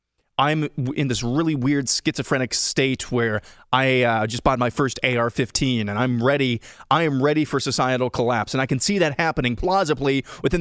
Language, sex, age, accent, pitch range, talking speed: English, male, 30-49, American, 115-145 Hz, 180 wpm